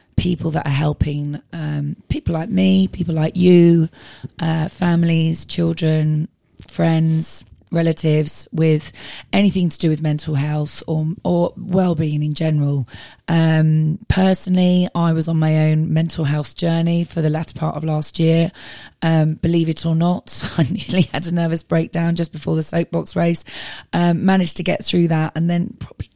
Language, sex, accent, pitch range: English, female, British, 155-170 Hz